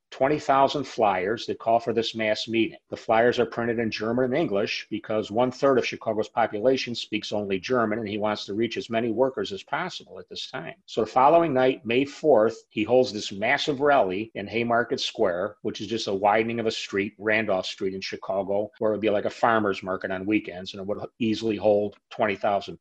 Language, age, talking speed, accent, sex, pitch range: English, 40-59, 210 wpm, American, male, 105-125 Hz